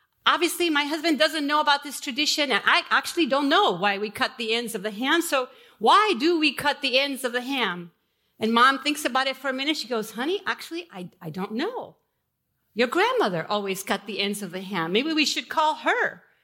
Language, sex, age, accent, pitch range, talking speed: English, female, 50-69, American, 230-325 Hz, 225 wpm